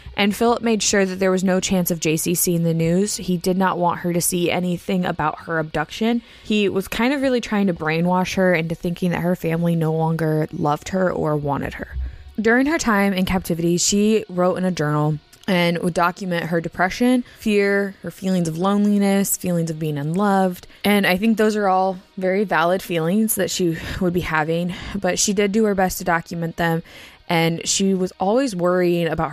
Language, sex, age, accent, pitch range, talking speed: English, female, 20-39, American, 170-210 Hz, 205 wpm